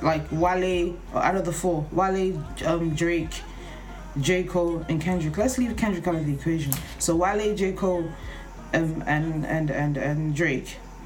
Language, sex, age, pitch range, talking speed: English, female, 20-39, 155-185 Hz, 170 wpm